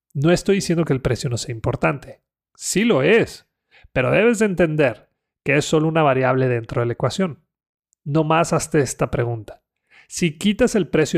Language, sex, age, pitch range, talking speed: Spanish, male, 30-49, 130-165 Hz, 185 wpm